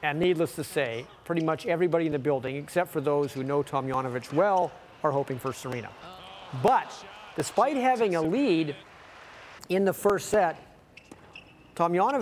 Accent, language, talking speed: American, English, 155 wpm